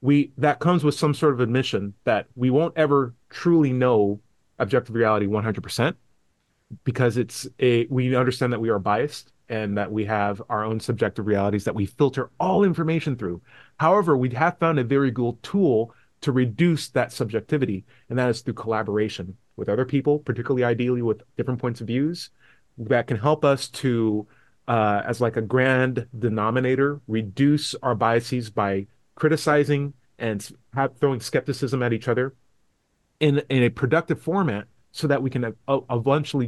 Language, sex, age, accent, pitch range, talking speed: English, male, 30-49, American, 110-140 Hz, 165 wpm